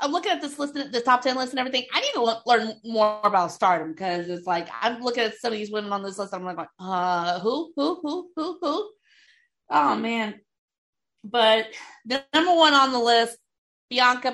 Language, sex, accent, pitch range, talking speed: English, female, American, 195-275 Hz, 215 wpm